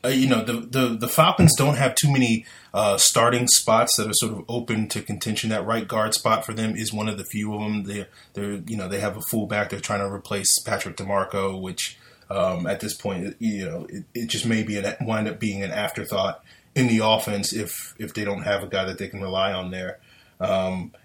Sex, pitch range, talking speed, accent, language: male, 100-120 Hz, 235 wpm, American, English